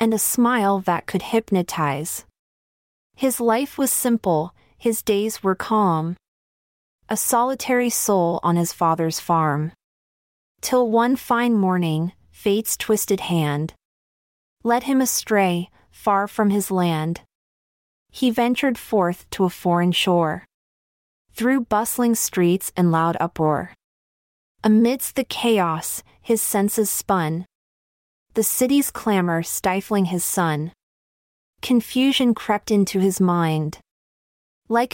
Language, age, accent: English, 30-49, American